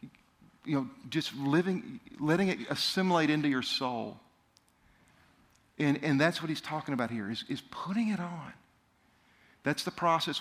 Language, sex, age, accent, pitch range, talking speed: English, male, 50-69, American, 140-185 Hz, 150 wpm